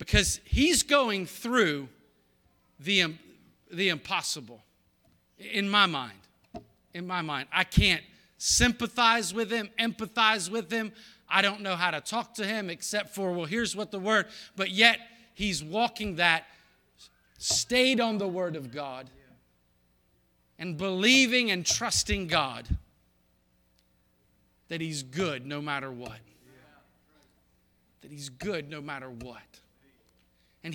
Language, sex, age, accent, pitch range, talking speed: English, male, 40-59, American, 135-210 Hz, 125 wpm